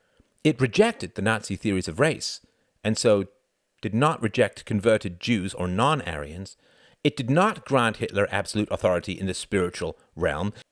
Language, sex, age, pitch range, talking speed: English, male, 50-69, 90-125 Hz, 150 wpm